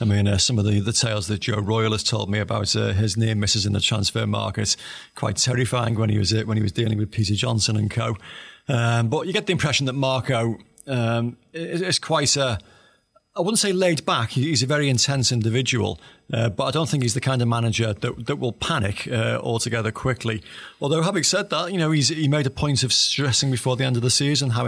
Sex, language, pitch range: male, English, 110-135 Hz